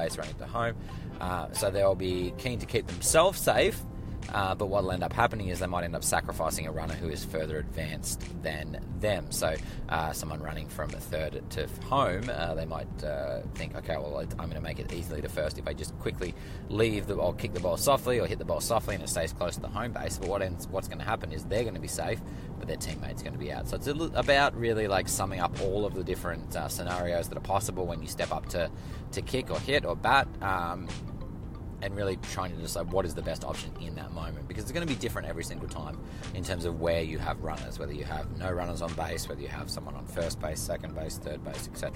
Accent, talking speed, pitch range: Australian, 245 wpm, 80-105 Hz